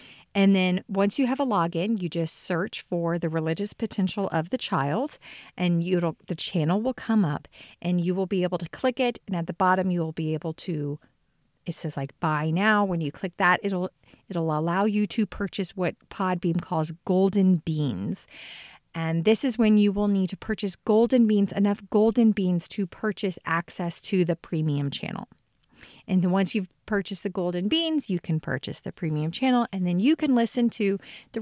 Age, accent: 40-59, American